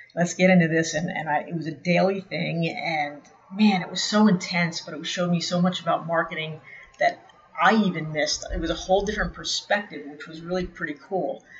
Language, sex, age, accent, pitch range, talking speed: English, female, 40-59, American, 160-185 Hz, 210 wpm